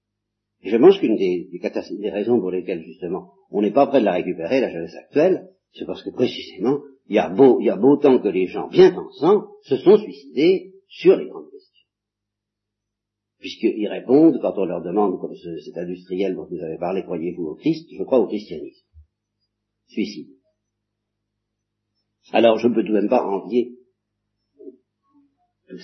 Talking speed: 165 wpm